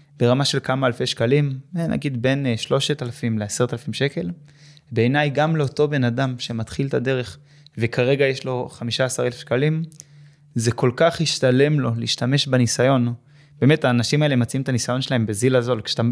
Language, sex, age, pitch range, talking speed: Hebrew, male, 20-39, 120-145 Hz, 165 wpm